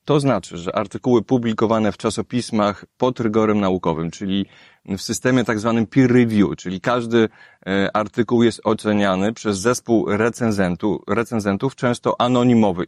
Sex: male